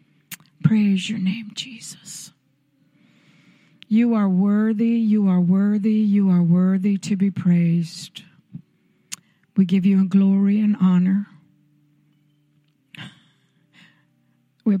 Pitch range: 175-230 Hz